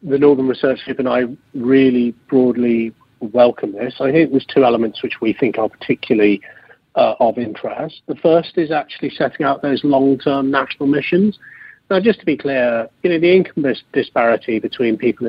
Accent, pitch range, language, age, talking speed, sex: British, 120-145 Hz, English, 40-59, 175 wpm, male